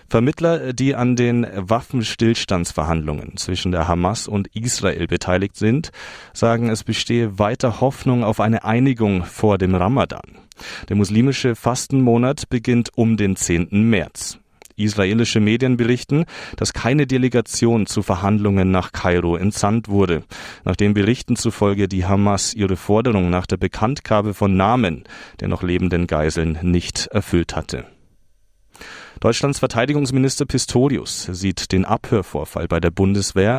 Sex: male